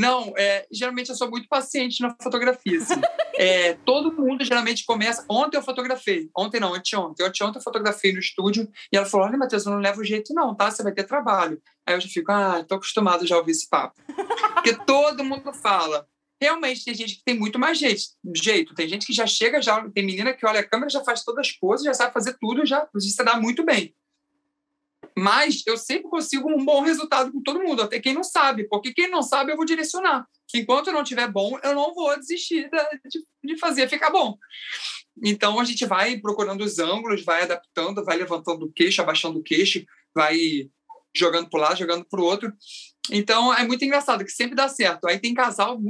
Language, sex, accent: Portuguese, male, Brazilian